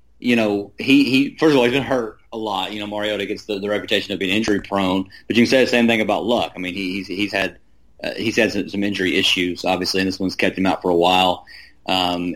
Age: 30-49